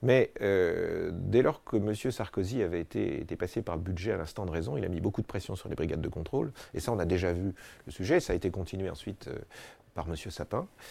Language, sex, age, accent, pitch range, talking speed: French, male, 40-59, French, 90-125 Hz, 250 wpm